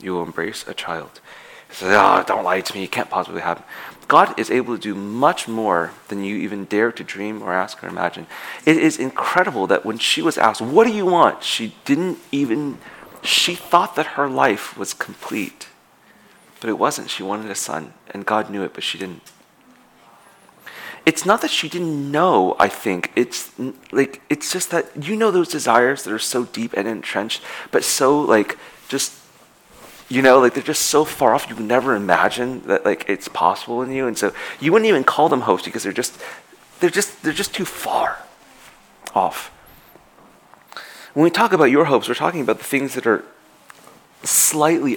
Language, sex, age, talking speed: English, male, 30-49, 195 wpm